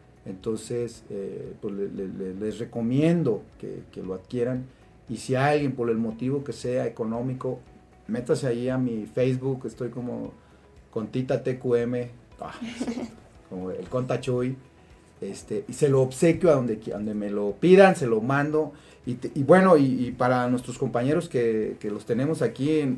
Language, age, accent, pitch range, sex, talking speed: Spanish, 40-59, Mexican, 110-145 Hz, male, 165 wpm